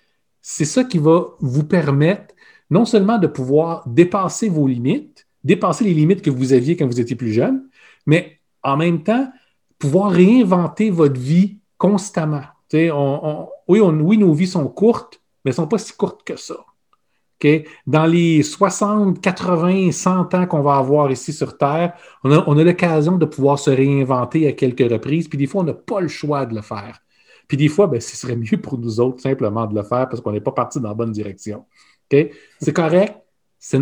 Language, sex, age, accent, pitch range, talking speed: French, male, 40-59, Canadian, 135-180 Hz, 195 wpm